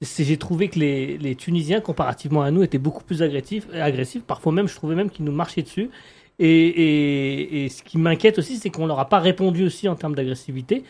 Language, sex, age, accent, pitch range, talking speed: French, male, 30-49, French, 140-180 Hz, 230 wpm